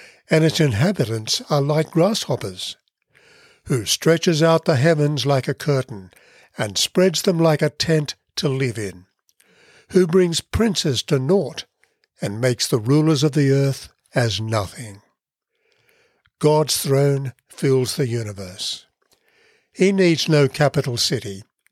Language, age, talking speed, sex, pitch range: English, 60-79, 130 wpm, male, 125-160 Hz